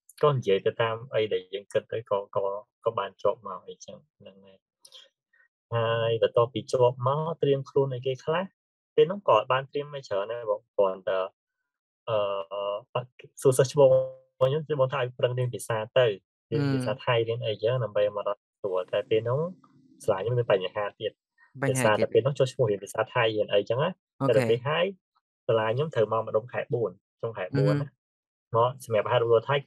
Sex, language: male, English